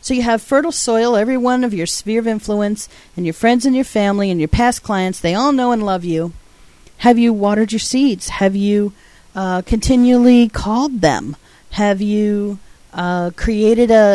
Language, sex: English, female